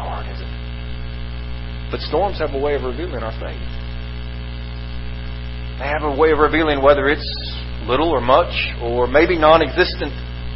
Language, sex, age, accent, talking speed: English, male, 40-59, American, 150 wpm